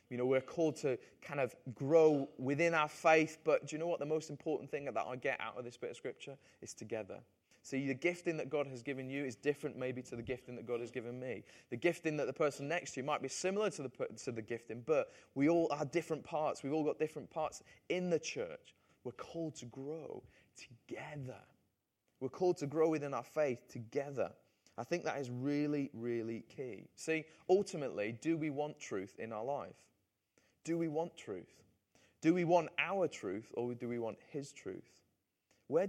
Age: 20-39